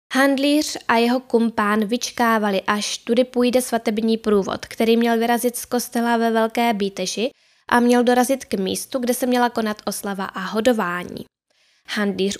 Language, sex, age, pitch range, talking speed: Czech, female, 10-29, 200-240 Hz, 150 wpm